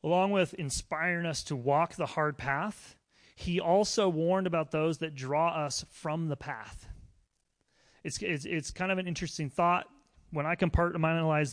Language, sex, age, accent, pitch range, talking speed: English, male, 30-49, American, 140-175 Hz, 160 wpm